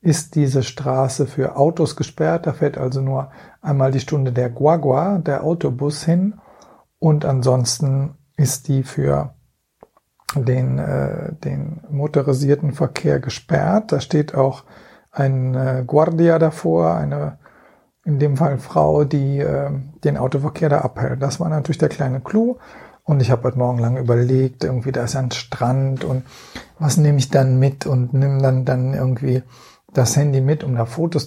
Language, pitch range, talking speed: German, 130-160 Hz, 160 wpm